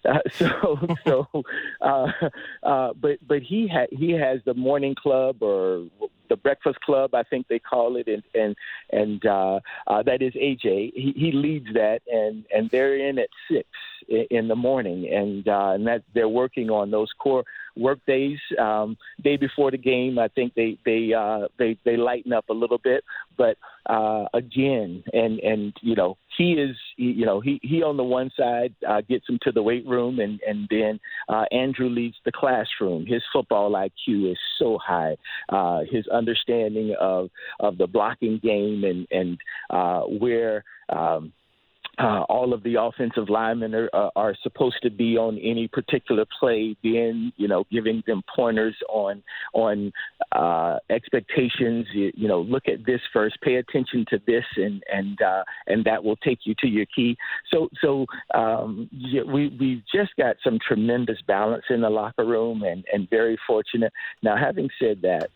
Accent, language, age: American, English, 50-69